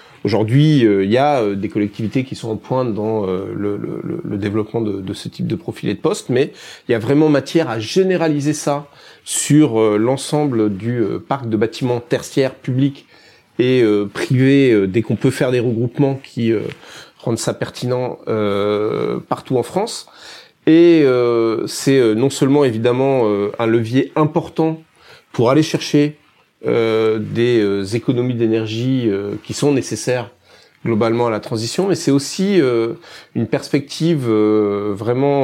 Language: French